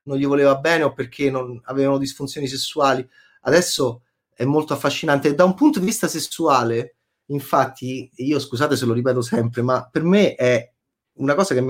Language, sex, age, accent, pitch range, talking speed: Italian, male, 30-49, native, 130-165 Hz, 175 wpm